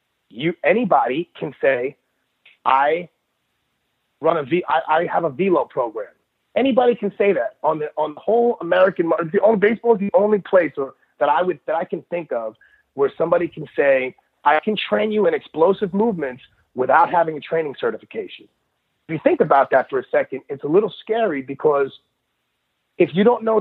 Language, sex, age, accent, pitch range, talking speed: English, male, 30-49, American, 155-235 Hz, 185 wpm